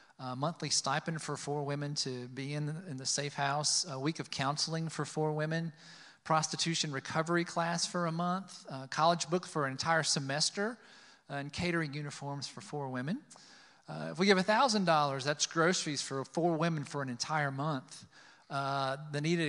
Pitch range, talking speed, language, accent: 135-170 Hz, 180 wpm, English, American